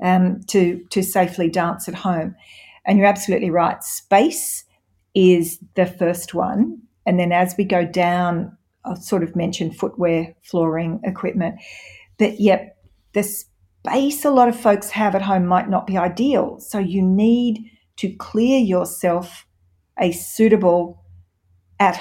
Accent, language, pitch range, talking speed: Australian, English, 175-225 Hz, 145 wpm